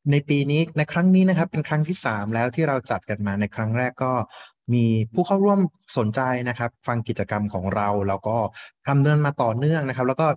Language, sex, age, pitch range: Thai, male, 30-49, 105-140 Hz